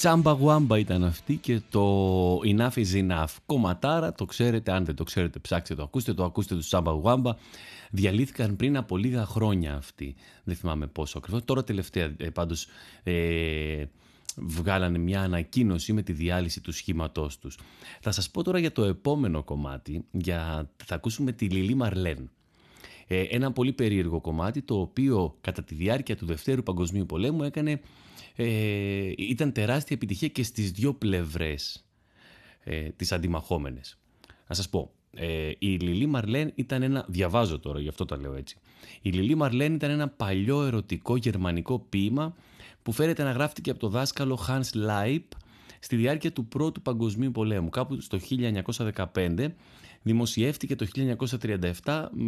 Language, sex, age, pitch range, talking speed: Greek, male, 30-49, 90-125 Hz, 150 wpm